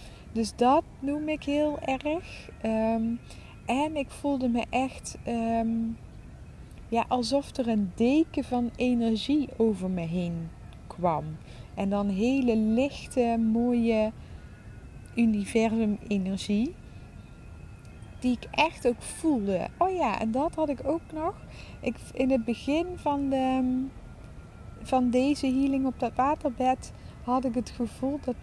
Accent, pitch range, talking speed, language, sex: Dutch, 210-270 Hz, 125 wpm, English, female